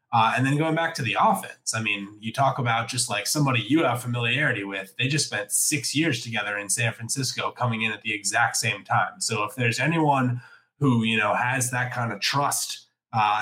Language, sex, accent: English, male, American